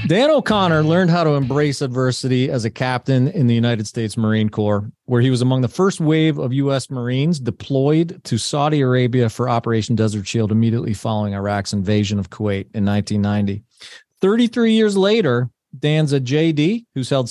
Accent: American